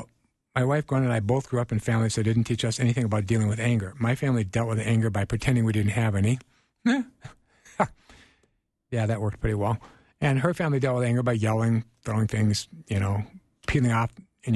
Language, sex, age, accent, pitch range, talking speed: English, male, 60-79, American, 115-150 Hz, 205 wpm